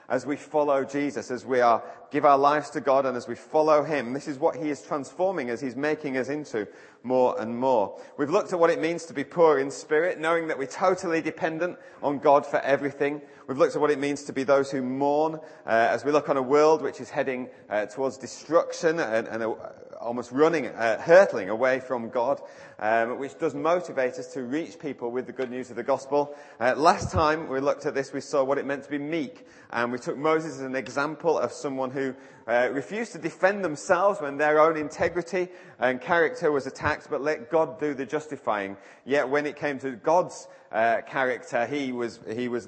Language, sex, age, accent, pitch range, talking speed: English, male, 30-49, British, 125-155 Hz, 220 wpm